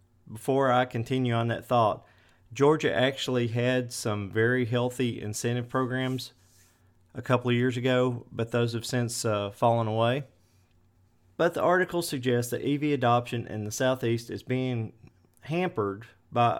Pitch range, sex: 105-130 Hz, male